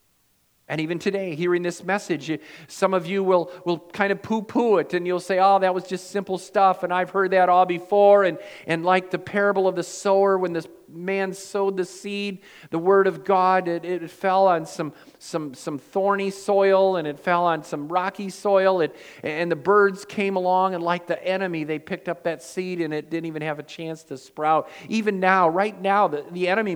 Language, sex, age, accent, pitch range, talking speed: English, male, 50-69, American, 170-200 Hz, 215 wpm